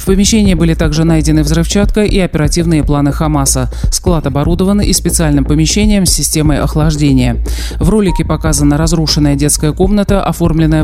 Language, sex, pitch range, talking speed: Russian, male, 145-180 Hz, 140 wpm